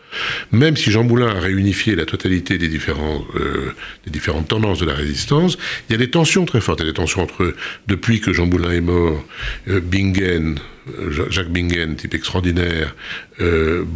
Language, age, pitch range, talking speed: French, 60-79, 85-125 Hz, 190 wpm